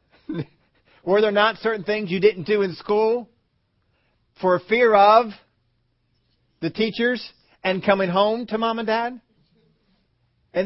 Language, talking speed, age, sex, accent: English, 130 wpm, 40-59, male, American